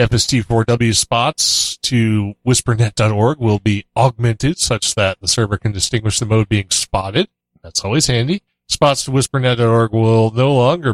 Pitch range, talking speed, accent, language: 110-135 Hz, 145 wpm, American, English